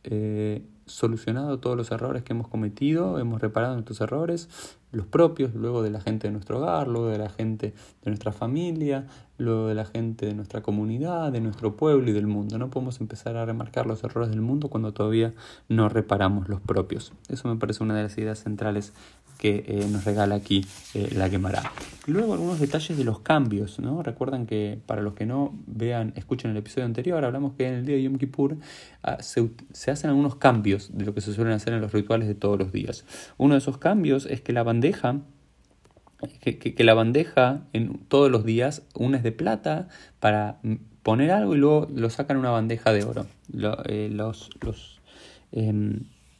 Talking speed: 200 wpm